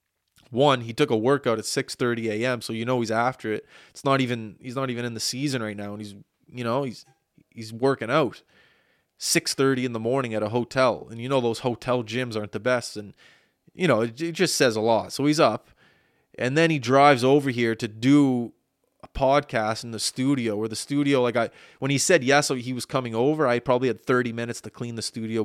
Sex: male